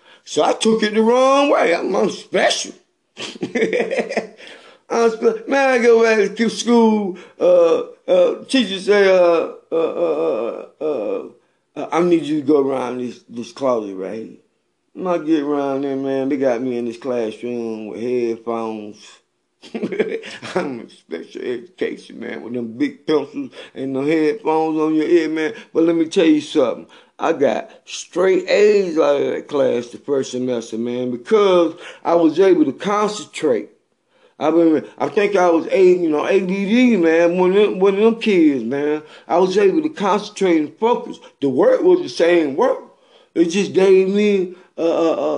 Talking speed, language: 165 wpm, English